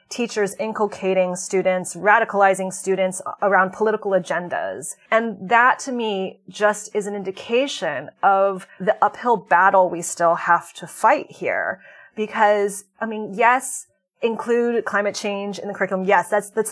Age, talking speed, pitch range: 30-49, 140 wpm, 185-225 Hz